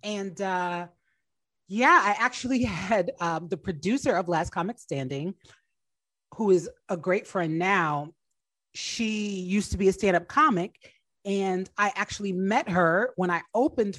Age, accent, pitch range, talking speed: 30-49, American, 170-215 Hz, 145 wpm